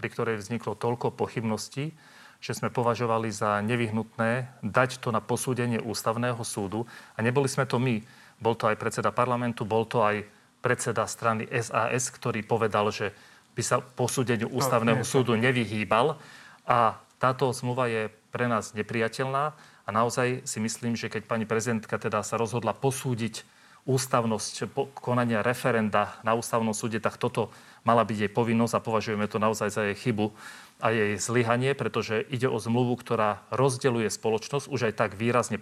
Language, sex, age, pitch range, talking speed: Slovak, male, 40-59, 110-125 Hz, 155 wpm